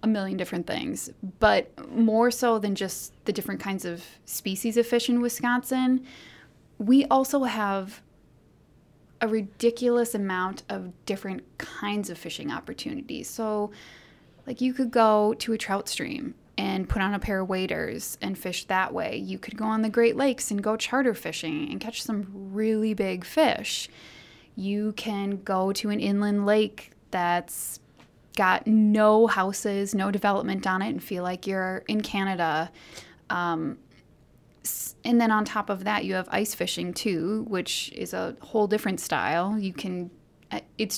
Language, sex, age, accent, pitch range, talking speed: English, female, 20-39, American, 190-235 Hz, 160 wpm